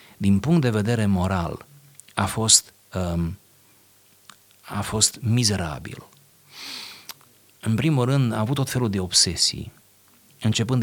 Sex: male